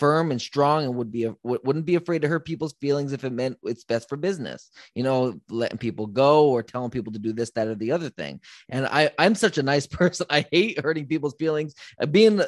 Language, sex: English, male